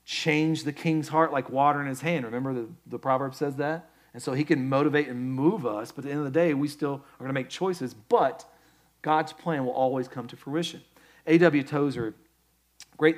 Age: 40-59